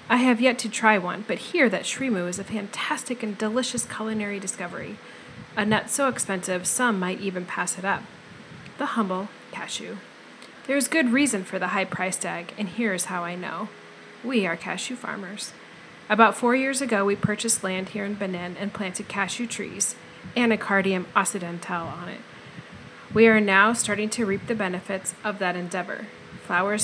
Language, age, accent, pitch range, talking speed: English, 30-49, American, 190-235 Hz, 175 wpm